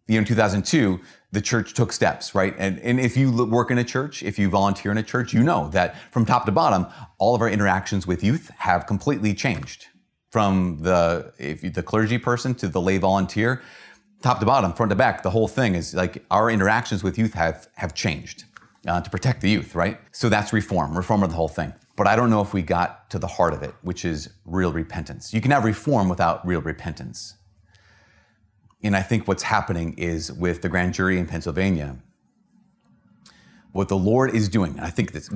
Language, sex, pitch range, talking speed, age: English, male, 90-110 Hz, 210 wpm, 30-49